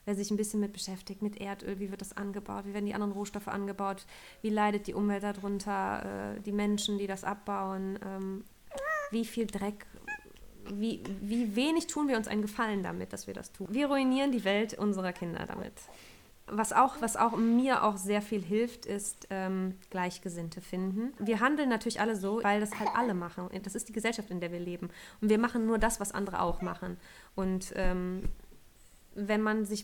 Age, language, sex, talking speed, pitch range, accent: 20-39, German, female, 195 wpm, 195-230 Hz, German